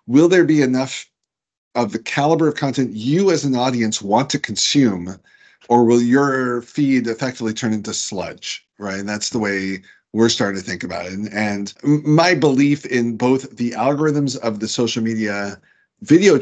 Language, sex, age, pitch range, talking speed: English, male, 40-59, 110-140 Hz, 175 wpm